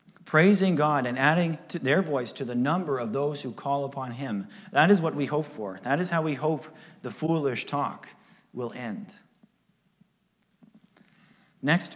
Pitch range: 135-185 Hz